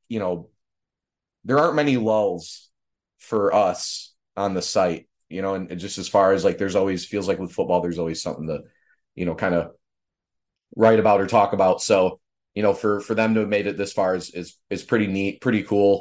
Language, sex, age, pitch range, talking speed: English, male, 30-49, 90-105 Hz, 215 wpm